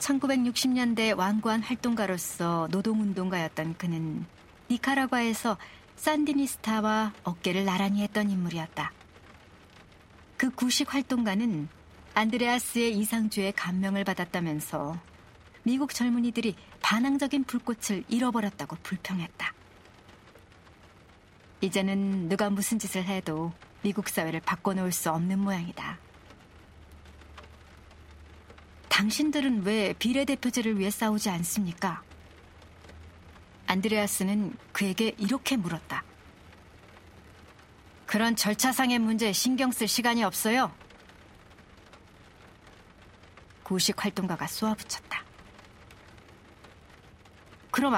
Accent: native